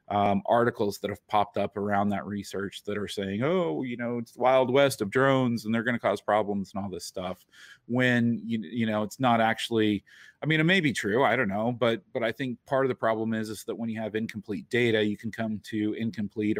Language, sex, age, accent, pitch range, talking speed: English, male, 30-49, American, 100-120 Hz, 245 wpm